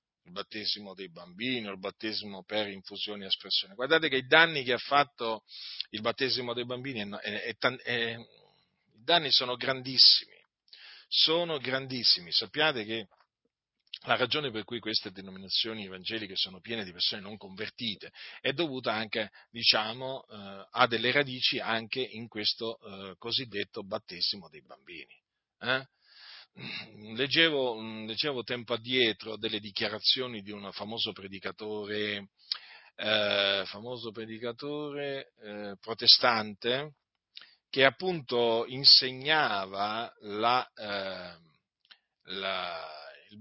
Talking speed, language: 115 wpm, Italian